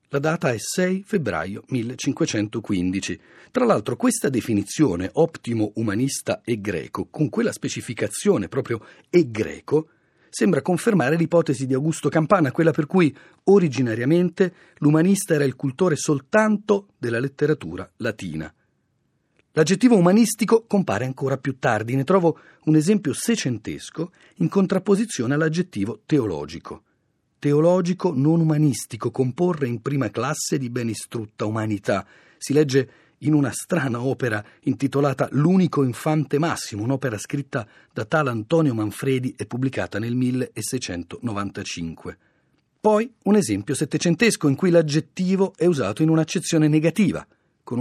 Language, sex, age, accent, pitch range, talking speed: Italian, male, 40-59, native, 120-170 Hz, 120 wpm